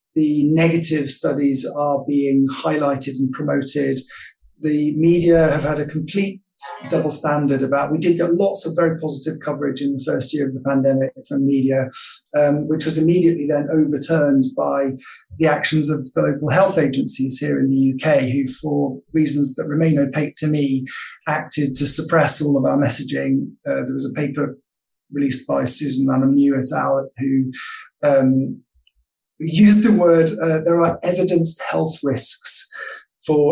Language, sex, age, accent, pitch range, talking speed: English, male, 30-49, British, 135-155 Hz, 160 wpm